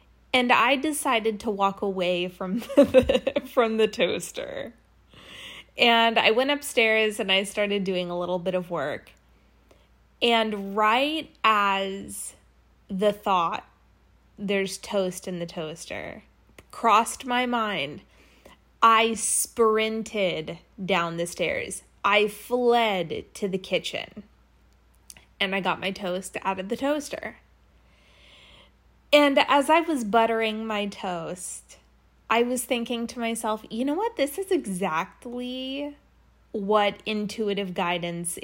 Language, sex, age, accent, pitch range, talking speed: English, female, 20-39, American, 190-245 Hz, 120 wpm